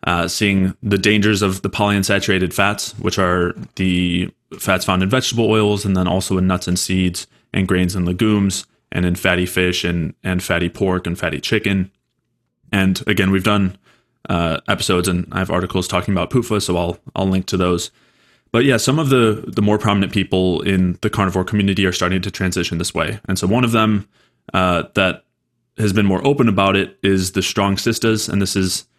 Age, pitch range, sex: 20-39, 90-105 Hz, male